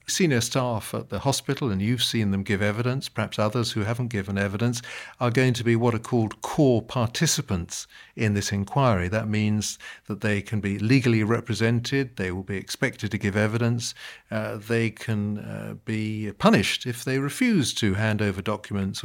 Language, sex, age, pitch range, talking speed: English, male, 50-69, 105-125 Hz, 180 wpm